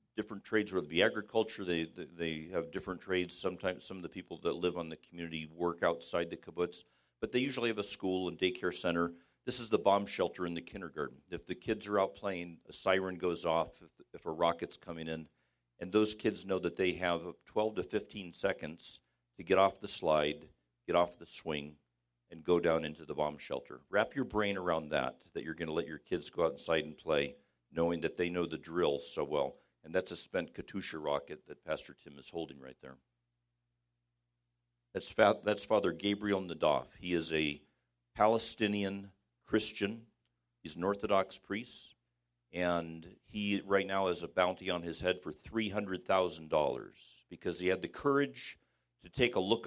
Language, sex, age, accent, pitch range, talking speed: English, male, 50-69, American, 75-100 Hz, 195 wpm